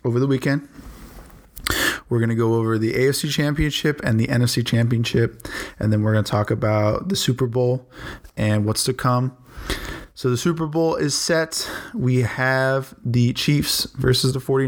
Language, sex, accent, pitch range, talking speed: English, male, American, 110-130 Hz, 170 wpm